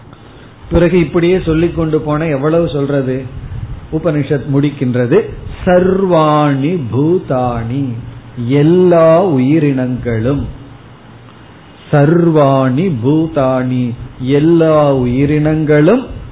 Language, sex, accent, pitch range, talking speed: Tamil, male, native, 130-155 Hz, 40 wpm